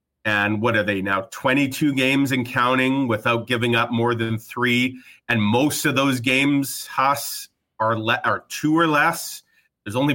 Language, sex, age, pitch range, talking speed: English, male, 40-59, 115-140 Hz, 165 wpm